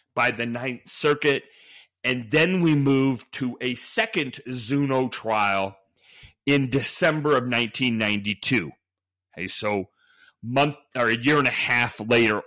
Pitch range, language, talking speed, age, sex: 115-145 Hz, English, 130 wpm, 40-59, male